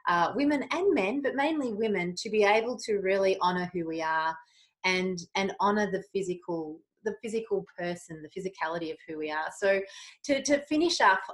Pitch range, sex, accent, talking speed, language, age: 170-200 Hz, female, Australian, 185 wpm, English, 30-49